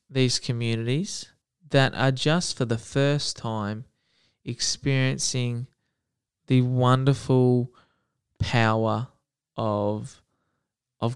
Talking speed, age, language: 80 wpm, 20-39, English